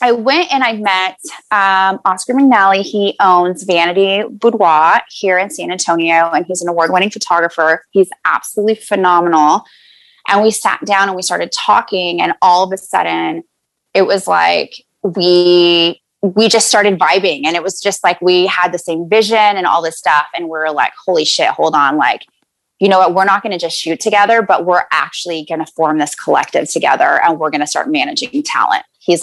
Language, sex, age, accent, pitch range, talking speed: English, female, 20-39, American, 170-205 Hz, 195 wpm